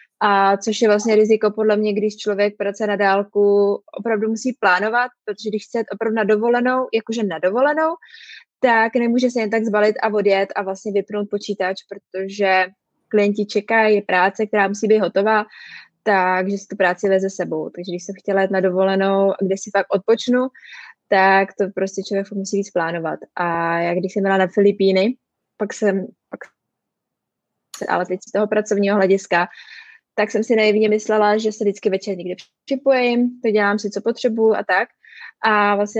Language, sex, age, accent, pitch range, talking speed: Czech, female, 20-39, native, 195-220 Hz, 175 wpm